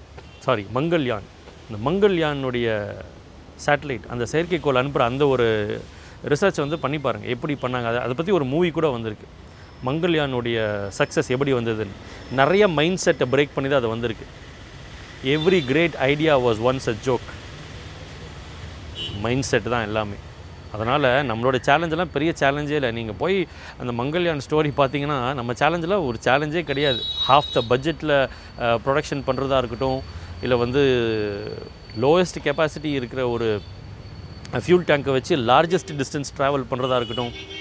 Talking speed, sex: 130 wpm, male